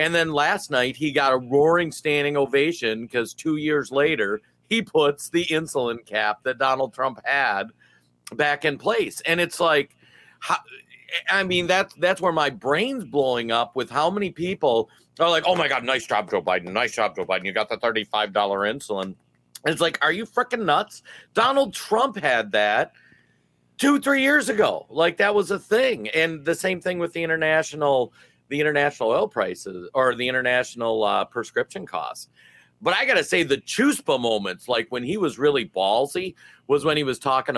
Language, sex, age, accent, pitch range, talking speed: English, male, 50-69, American, 120-175 Hz, 185 wpm